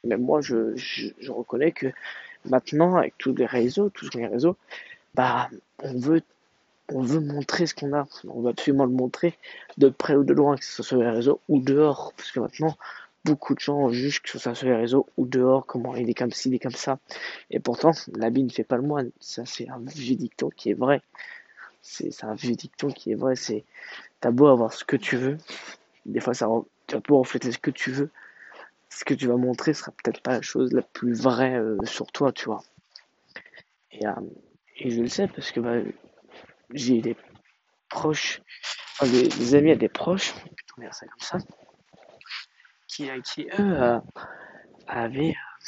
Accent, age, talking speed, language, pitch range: French, 20-39, 205 wpm, French, 120-145 Hz